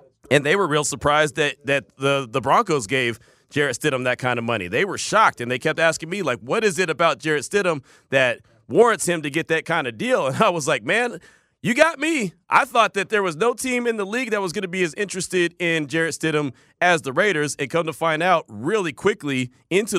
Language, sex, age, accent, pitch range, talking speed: English, male, 30-49, American, 130-175 Hz, 240 wpm